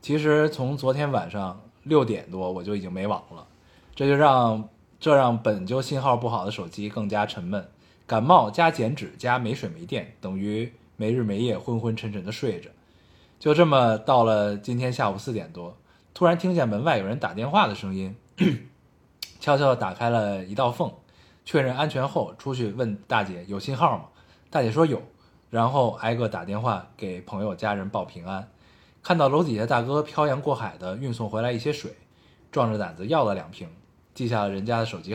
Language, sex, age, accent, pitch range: Chinese, male, 20-39, native, 105-145 Hz